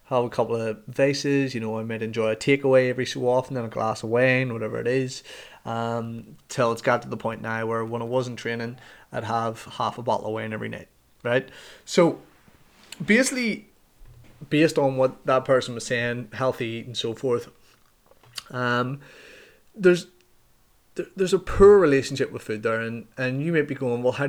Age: 20-39